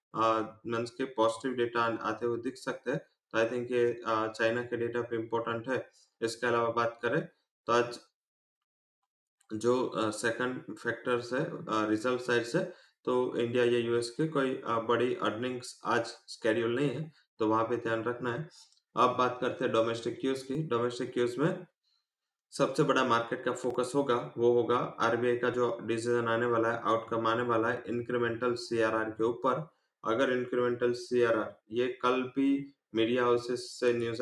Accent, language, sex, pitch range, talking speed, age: Indian, English, male, 115-130 Hz, 130 wpm, 20-39